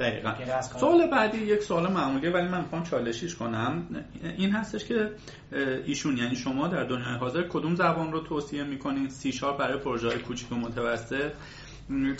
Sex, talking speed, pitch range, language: male, 155 wpm, 130-170 Hz, Persian